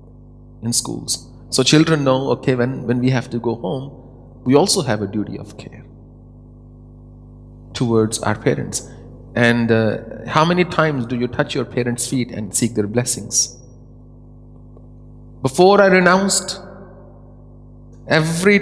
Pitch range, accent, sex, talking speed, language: 120-135 Hz, Indian, male, 135 wpm, English